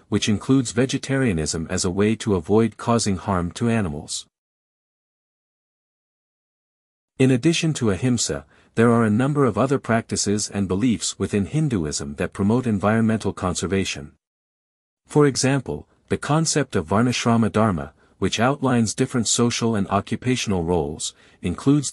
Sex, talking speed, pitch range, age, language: male, 125 wpm, 95-125 Hz, 50-69, English